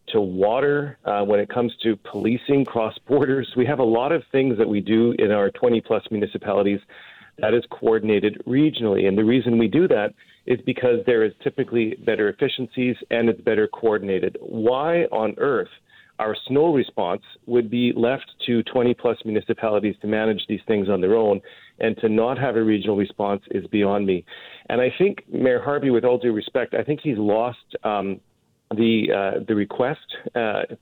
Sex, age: male, 40-59